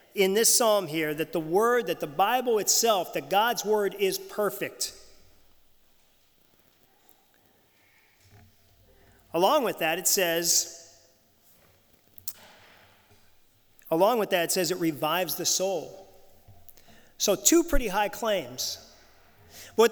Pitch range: 180-230 Hz